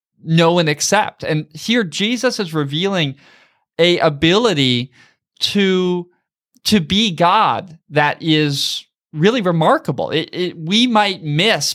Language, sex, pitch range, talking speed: English, male, 140-185 Hz, 115 wpm